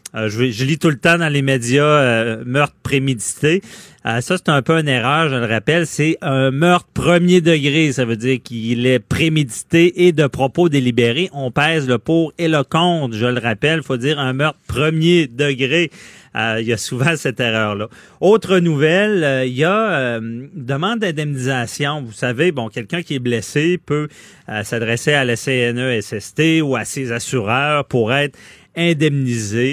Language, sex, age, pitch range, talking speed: French, male, 30-49, 120-165 Hz, 185 wpm